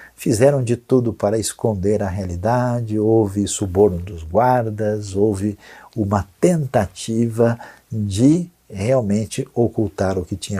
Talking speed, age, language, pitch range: 115 wpm, 60-79, Portuguese, 100-130 Hz